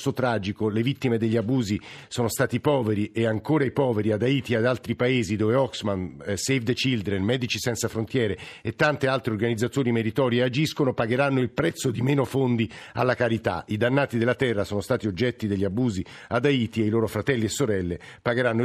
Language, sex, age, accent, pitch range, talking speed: Italian, male, 50-69, native, 105-130 Hz, 195 wpm